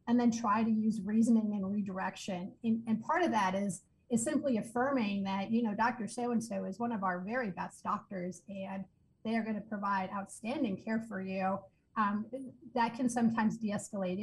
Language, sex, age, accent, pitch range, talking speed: English, female, 40-59, American, 195-225 Hz, 185 wpm